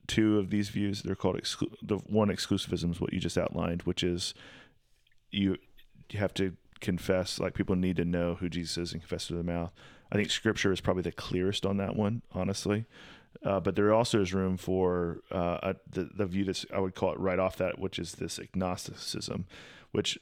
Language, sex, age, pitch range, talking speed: English, male, 30-49, 90-105 Hz, 210 wpm